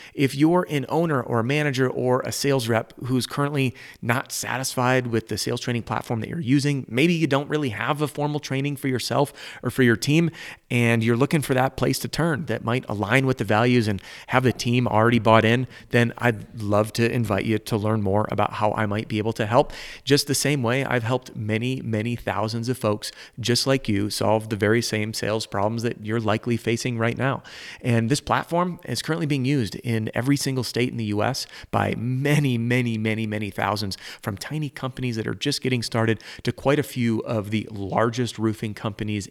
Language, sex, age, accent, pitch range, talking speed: English, male, 30-49, American, 110-135 Hz, 210 wpm